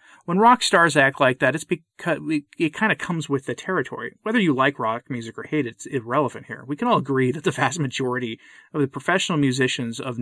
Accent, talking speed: American, 230 wpm